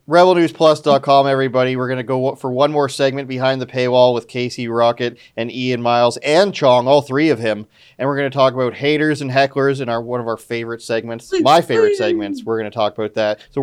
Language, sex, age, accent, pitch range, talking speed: English, male, 30-49, American, 125-150 Hz, 225 wpm